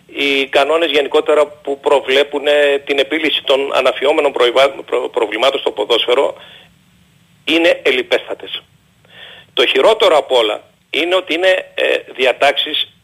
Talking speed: 100 wpm